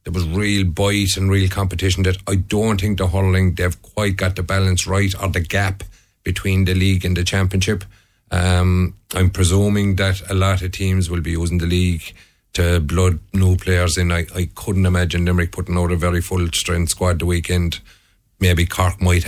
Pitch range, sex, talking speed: 90-100 Hz, male, 195 wpm